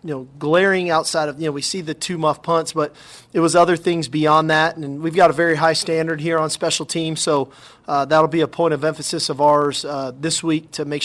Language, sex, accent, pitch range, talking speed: English, male, American, 150-165 Hz, 250 wpm